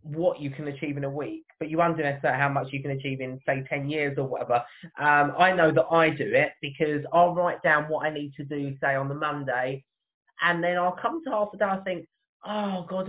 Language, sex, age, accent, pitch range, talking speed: English, male, 20-39, British, 145-180 Hz, 250 wpm